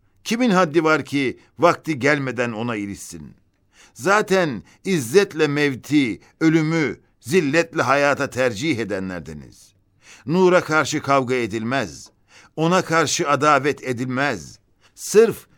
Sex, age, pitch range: male, 60-79, 140-180 Hz